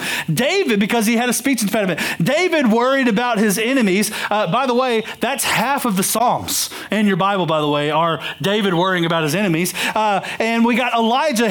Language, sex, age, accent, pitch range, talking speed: English, male, 40-59, American, 170-240 Hz, 205 wpm